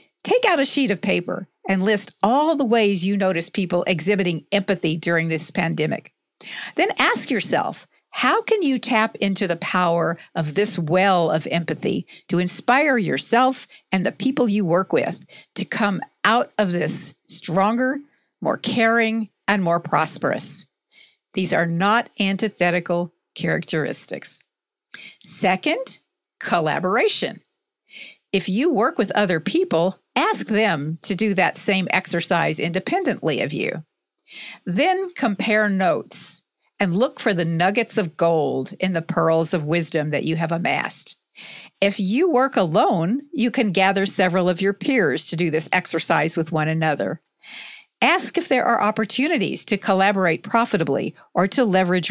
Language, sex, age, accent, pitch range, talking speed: English, female, 50-69, American, 170-235 Hz, 145 wpm